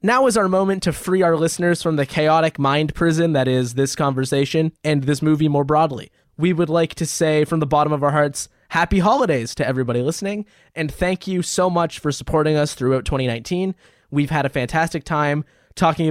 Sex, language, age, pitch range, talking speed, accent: male, English, 20-39, 135-165 Hz, 200 wpm, American